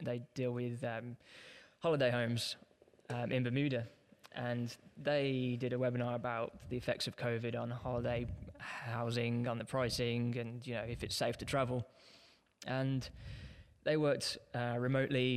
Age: 20-39